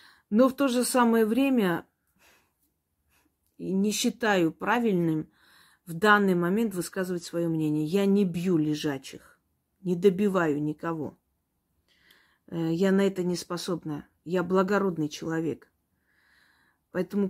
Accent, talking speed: native, 110 wpm